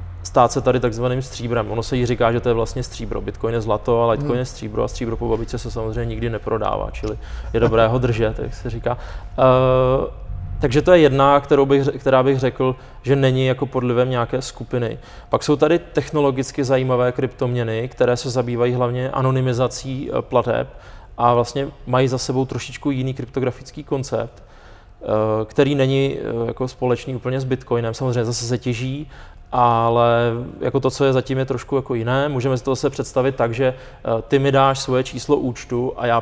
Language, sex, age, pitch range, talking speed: Czech, male, 20-39, 120-130 Hz, 185 wpm